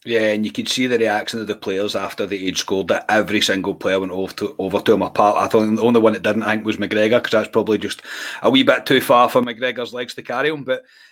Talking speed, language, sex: 280 wpm, English, male